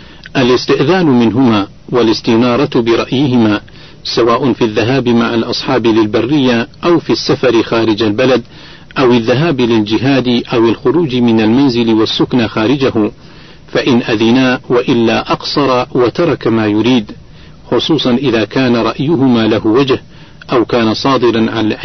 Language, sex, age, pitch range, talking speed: Arabic, male, 50-69, 115-135 Hz, 115 wpm